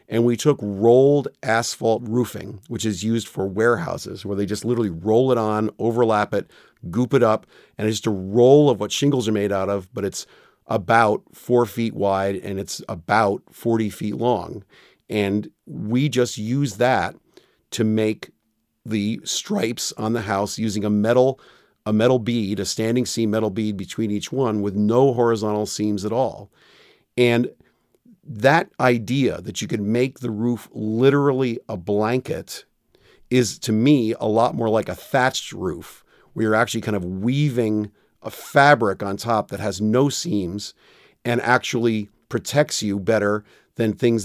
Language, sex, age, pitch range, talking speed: English, male, 40-59, 105-125 Hz, 165 wpm